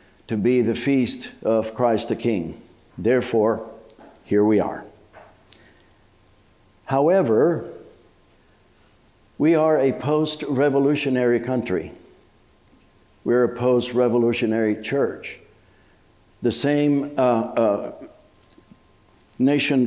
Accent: American